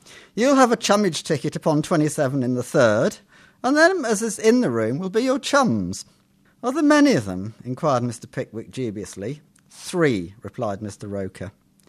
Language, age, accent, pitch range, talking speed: English, 50-69, British, 130-190 Hz, 170 wpm